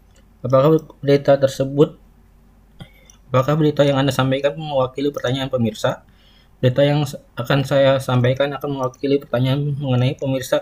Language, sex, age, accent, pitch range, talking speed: Indonesian, male, 20-39, native, 125-145 Hz, 120 wpm